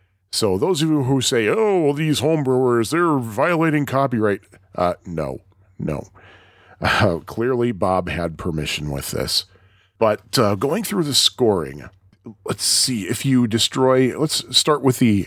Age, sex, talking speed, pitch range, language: 40-59, male, 145 wpm, 95-130 Hz, English